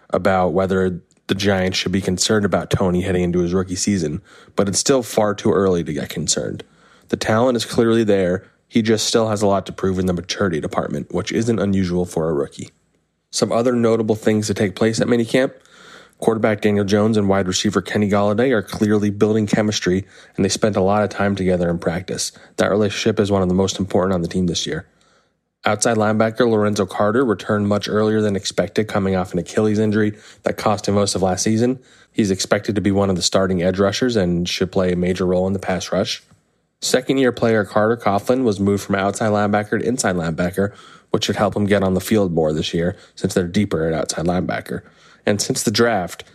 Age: 20-39